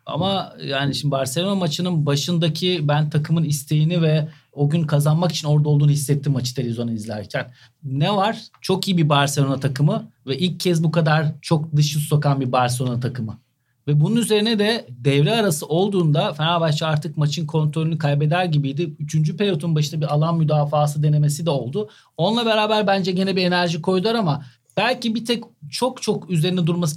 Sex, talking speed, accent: male, 165 wpm, native